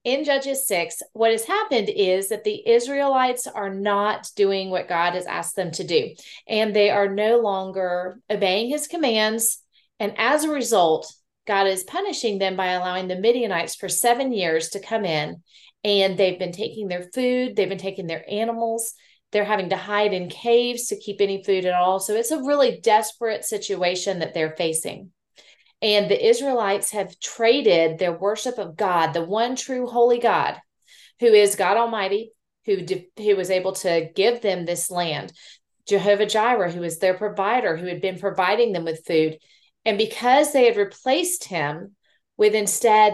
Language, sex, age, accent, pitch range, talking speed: English, female, 30-49, American, 185-235 Hz, 175 wpm